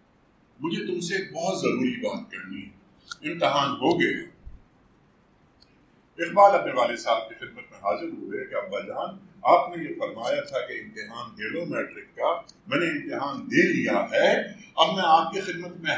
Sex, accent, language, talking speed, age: male, Indian, English, 165 wpm, 50-69